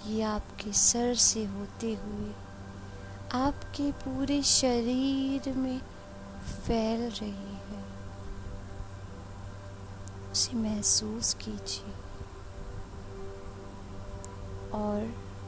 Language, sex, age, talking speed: Hindi, female, 20-39, 65 wpm